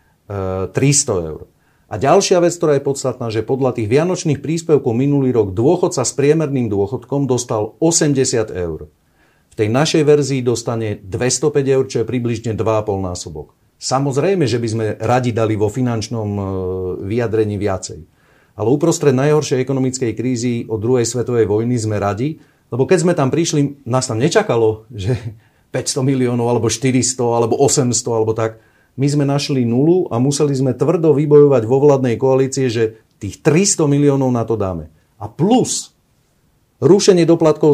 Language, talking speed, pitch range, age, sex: Slovak, 150 wpm, 110-145 Hz, 40-59, male